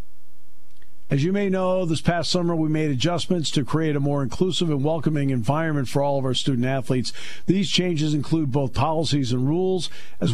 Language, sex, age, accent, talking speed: English, male, 50-69, American, 180 wpm